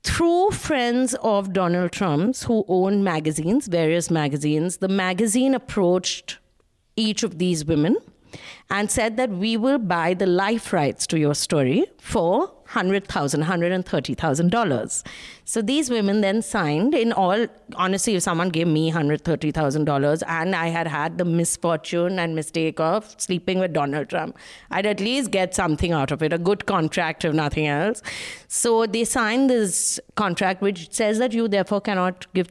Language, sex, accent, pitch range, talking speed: English, female, Indian, 170-220 Hz, 160 wpm